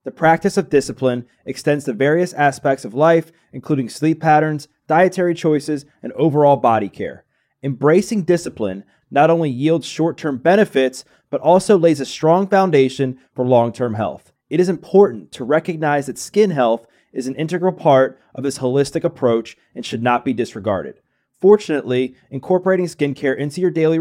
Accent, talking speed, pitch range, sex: American, 155 wpm, 130-170 Hz, male